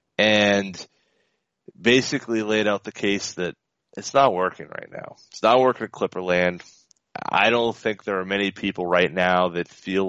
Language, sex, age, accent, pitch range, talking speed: English, male, 30-49, American, 90-110 Hz, 175 wpm